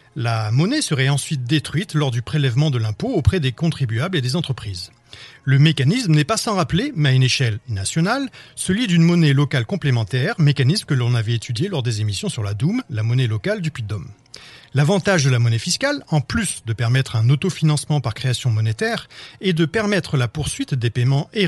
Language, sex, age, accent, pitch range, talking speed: French, male, 40-59, French, 120-155 Hz, 200 wpm